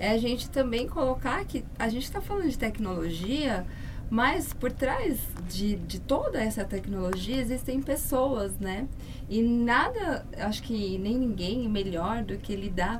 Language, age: Portuguese, 20-39